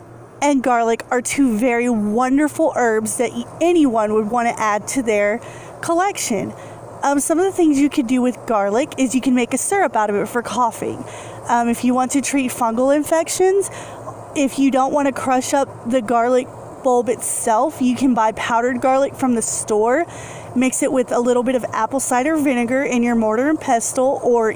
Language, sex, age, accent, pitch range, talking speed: English, female, 30-49, American, 230-275 Hz, 195 wpm